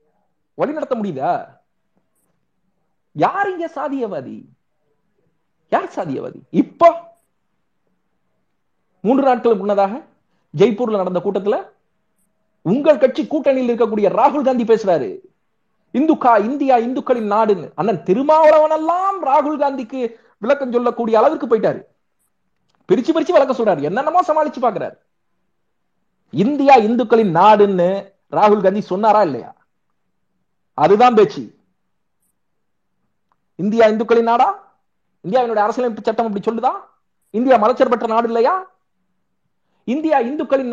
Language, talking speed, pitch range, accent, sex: Tamil, 90 wpm, 225-295 Hz, native, male